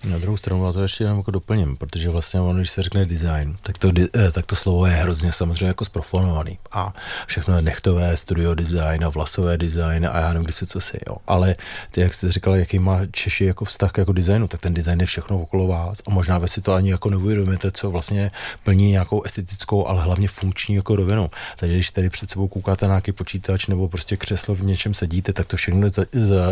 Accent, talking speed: native, 230 wpm